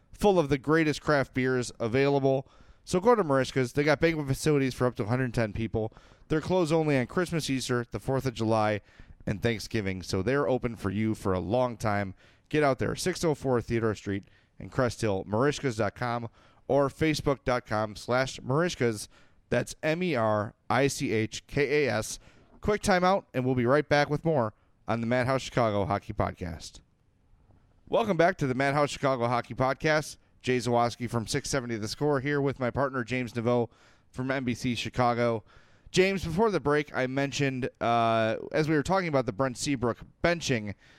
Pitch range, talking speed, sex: 115-150 Hz, 160 wpm, male